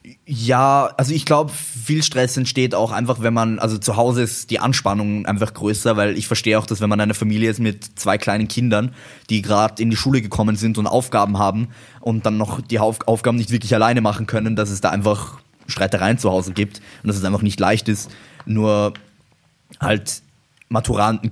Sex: male